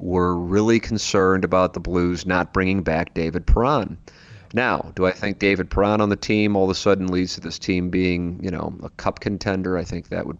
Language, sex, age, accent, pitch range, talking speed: English, male, 40-59, American, 90-105 Hz, 220 wpm